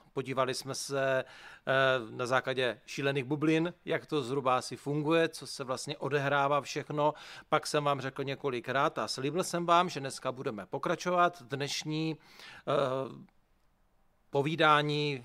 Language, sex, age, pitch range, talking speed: Czech, male, 40-59, 135-170 Hz, 125 wpm